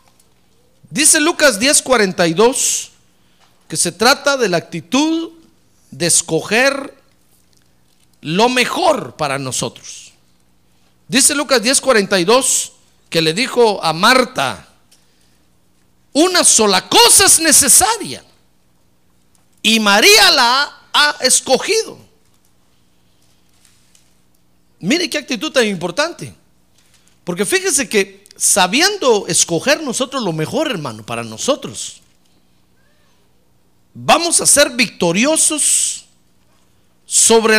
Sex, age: male, 50-69